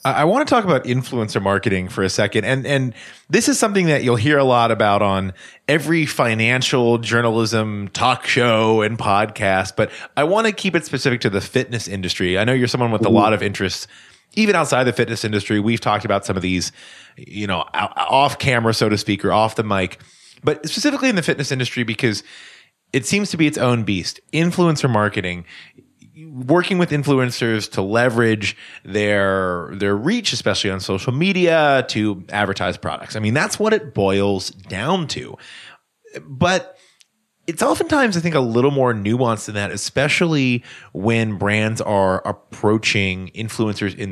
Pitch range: 105-150 Hz